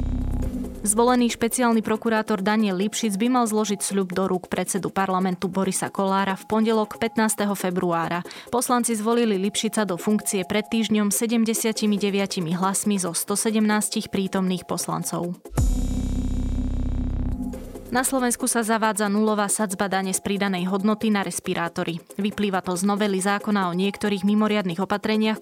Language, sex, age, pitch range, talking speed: Slovak, female, 20-39, 185-215 Hz, 125 wpm